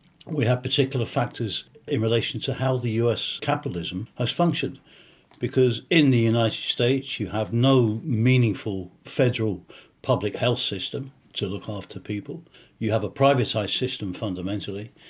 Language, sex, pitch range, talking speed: English, male, 105-140 Hz, 145 wpm